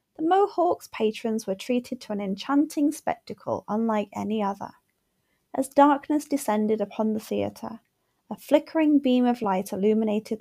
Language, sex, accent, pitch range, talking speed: English, female, British, 215-285 Hz, 135 wpm